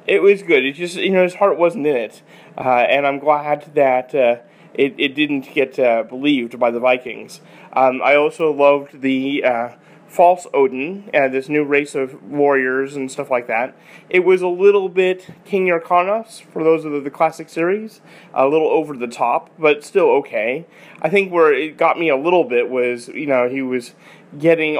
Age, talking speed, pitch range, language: 30-49, 200 wpm, 130-175 Hz, English